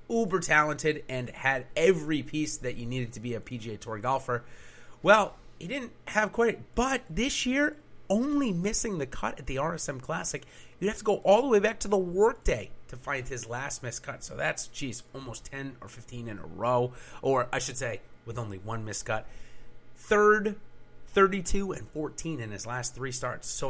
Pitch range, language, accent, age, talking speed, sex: 115-165 Hz, English, American, 30-49, 190 wpm, male